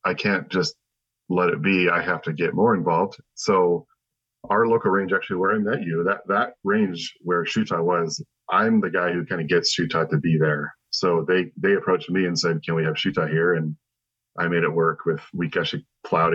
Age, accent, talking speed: 40-59, American, 215 wpm